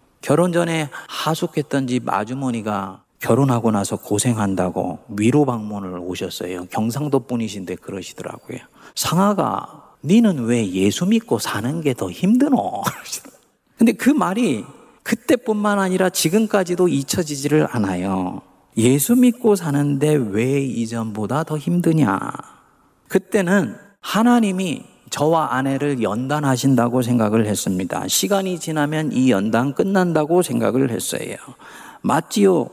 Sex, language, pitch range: male, Korean, 110-175 Hz